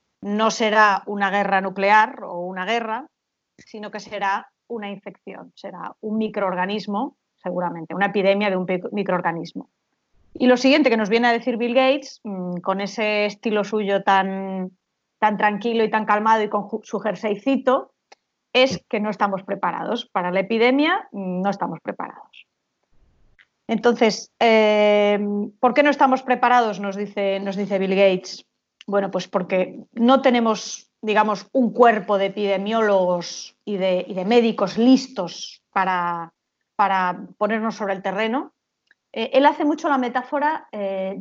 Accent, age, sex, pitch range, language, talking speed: Spanish, 30-49, female, 195-230 Hz, Spanish, 145 wpm